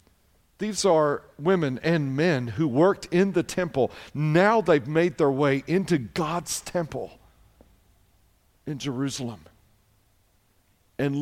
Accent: American